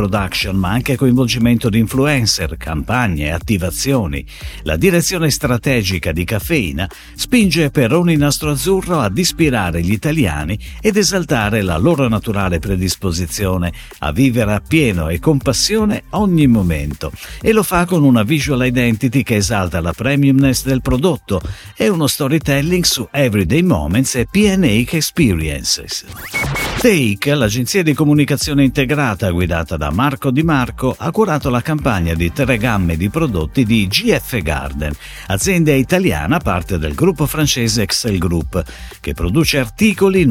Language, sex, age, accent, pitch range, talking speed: Italian, male, 50-69, native, 95-150 Hz, 140 wpm